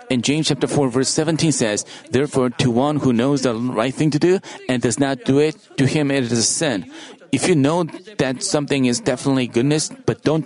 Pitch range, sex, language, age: 130-180 Hz, male, Korean, 40-59